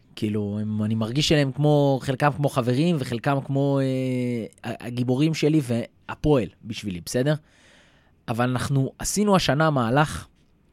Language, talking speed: Hebrew, 115 wpm